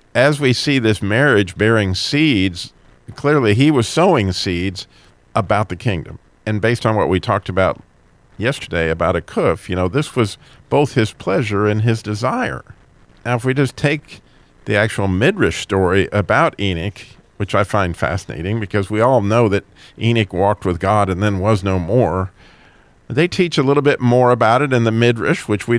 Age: 50-69